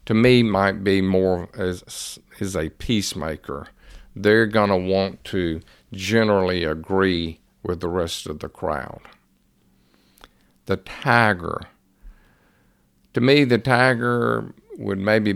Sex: male